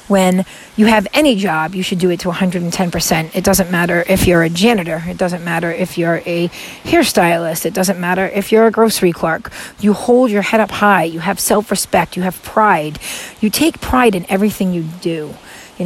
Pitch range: 180-235 Hz